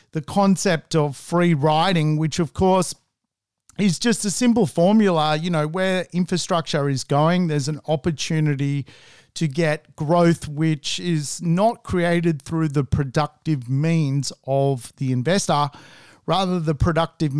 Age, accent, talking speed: 40-59, Australian, 135 wpm